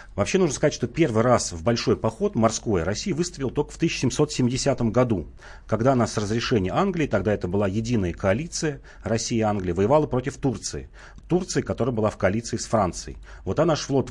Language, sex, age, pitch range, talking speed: Russian, male, 40-59, 100-130 Hz, 185 wpm